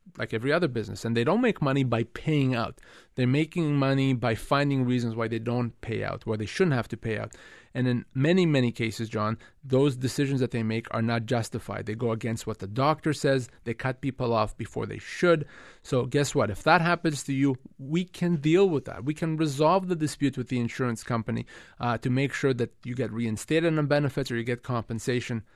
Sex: male